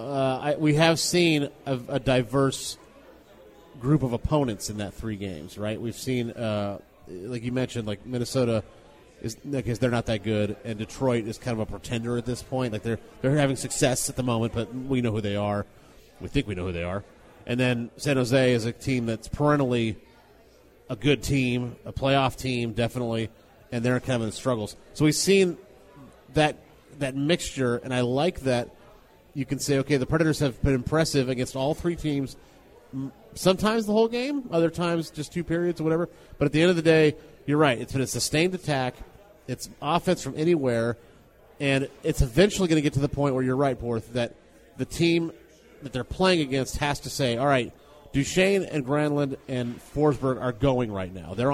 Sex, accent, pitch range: male, American, 120-150 Hz